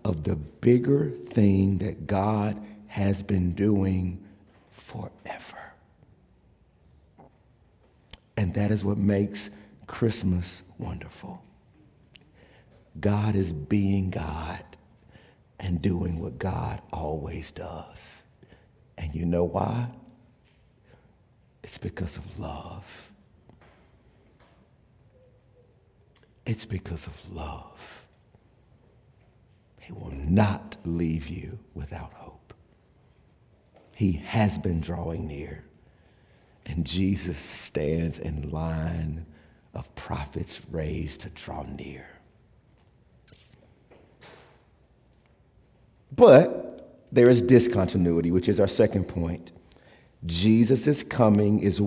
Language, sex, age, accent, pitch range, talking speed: English, male, 60-79, American, 85-110 Hz, 85 wpm